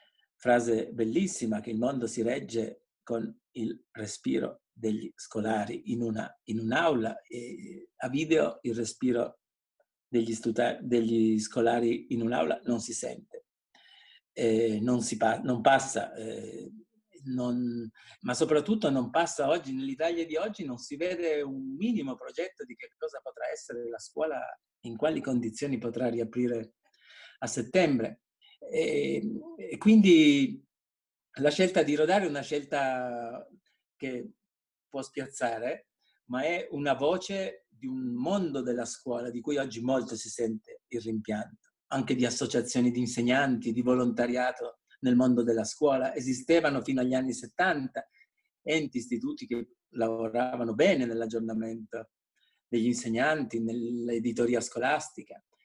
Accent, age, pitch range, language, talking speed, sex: native, 50-69, 115-160 Hz, Italian, 125 wpm, male